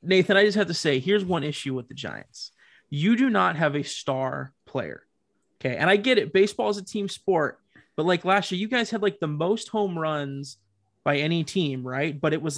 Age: 20-39